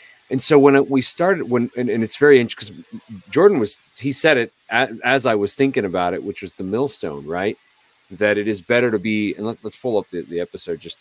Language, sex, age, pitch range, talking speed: English, male, 30-49, 90-115 Hz, 245 wpm